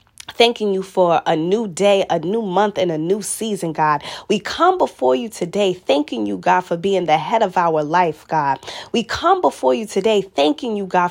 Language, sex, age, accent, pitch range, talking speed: English, female, 20-39, American, 175-235 Hz, 205 wpm